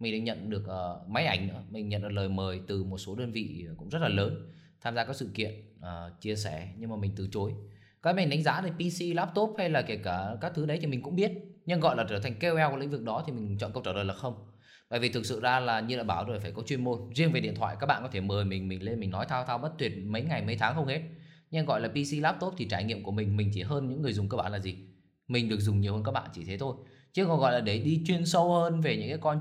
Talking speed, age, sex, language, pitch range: 310 wpm, 20-39, male, Vietnamese, 105-140 Hz